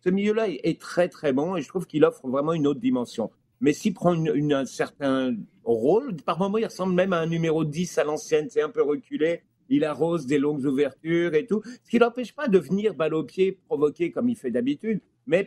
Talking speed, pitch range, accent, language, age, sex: 235 wpm, 140-215 Hz, French, French, 50-69, male